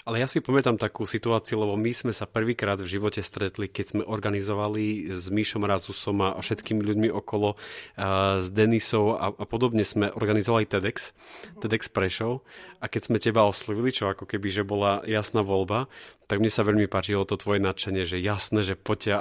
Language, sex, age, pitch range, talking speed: Slovak, male, 30-49, 100-110 Hz, 185 wpm